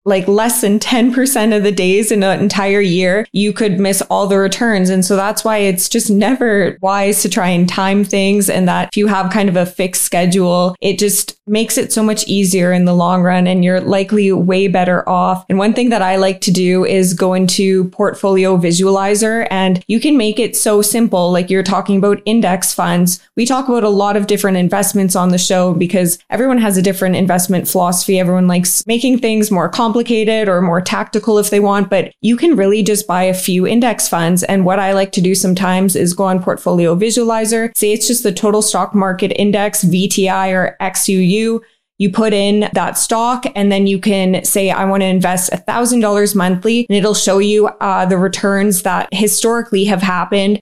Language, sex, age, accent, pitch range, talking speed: English, female, 20-39, American, 185-215 Hz, 205 wpm